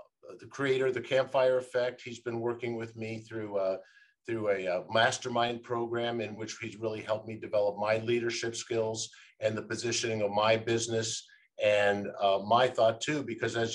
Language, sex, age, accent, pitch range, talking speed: English, male, 50-69, American, 110-125 Hz, 180 wpm